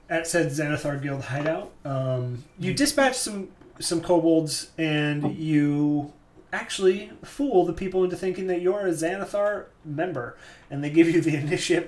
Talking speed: 150 wpm